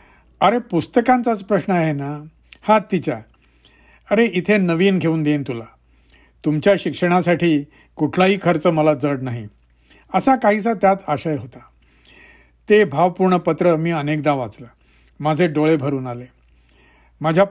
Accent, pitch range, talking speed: Indian, 145-190 Hz, 125 wpm